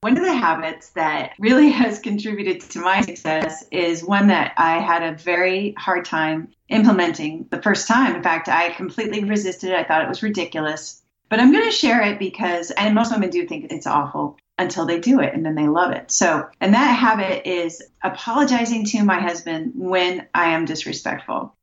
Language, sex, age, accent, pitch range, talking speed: English, female, 30-49, American, 175-235 Hz, 195 wpm